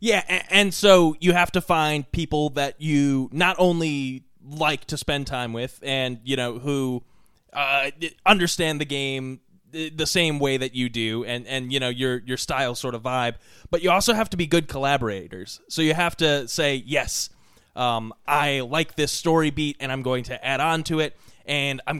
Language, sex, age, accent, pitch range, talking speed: English, male, 20-39, American, 130-160 Hz, 195 wpm